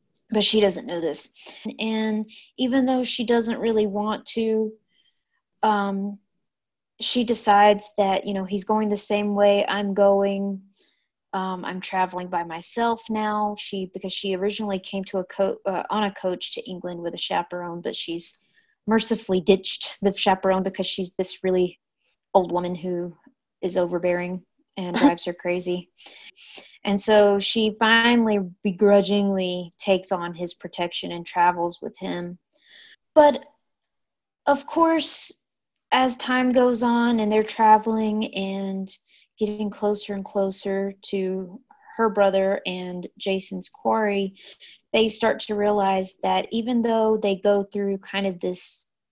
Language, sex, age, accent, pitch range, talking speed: English, female, 30-49, American, 190-220 Hz, 140 wpm